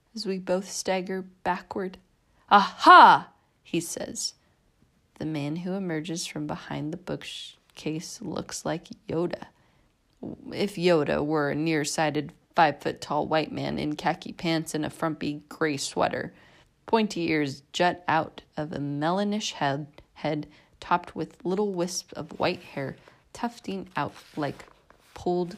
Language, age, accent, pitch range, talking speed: English, 30-49, American, 145-180 Hz, 130 wpm